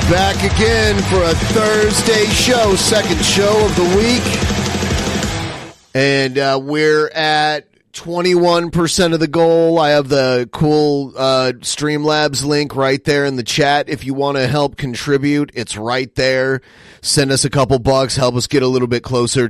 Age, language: 30-49, English